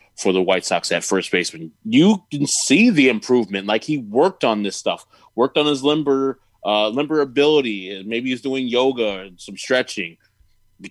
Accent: American